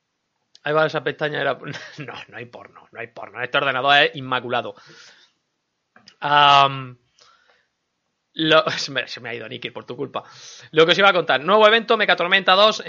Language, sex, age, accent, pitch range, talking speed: Spanish, male, 20-39, Spanish, 130-175 Hz, 170 wpm